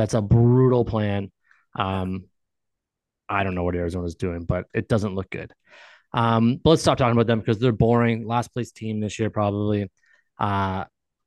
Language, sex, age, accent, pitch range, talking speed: English, male, 20-39, American, 100-120 Hz, 180 wpm